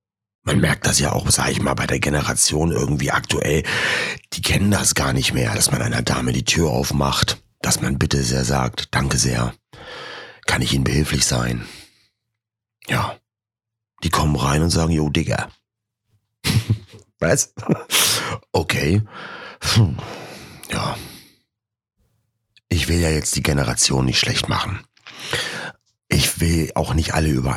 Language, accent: German, German